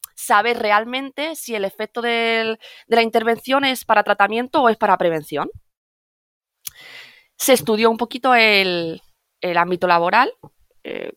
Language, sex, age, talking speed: Spanish, female, 20-39, 135 wpm